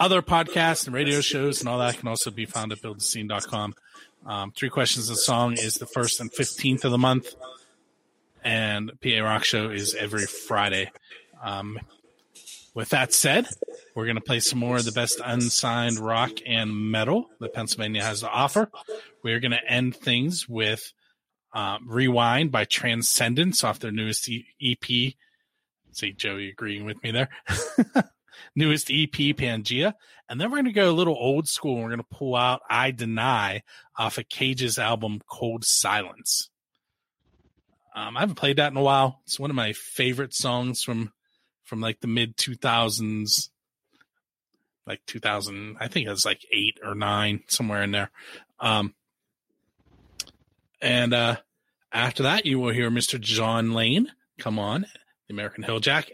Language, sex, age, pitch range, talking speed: English, male, 30-49, 110-135 Hz, 160 wpm